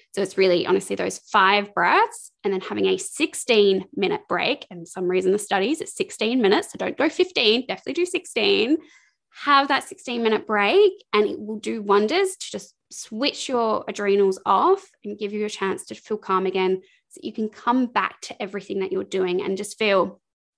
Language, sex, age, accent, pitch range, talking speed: English, female, 20-39, Australian, 195-295 Hz, 200 wpm